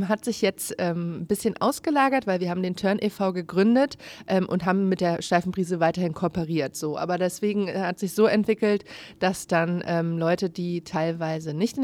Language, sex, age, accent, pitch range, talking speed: German, female, 30-49, German, 165-205 Hz, 190 wpm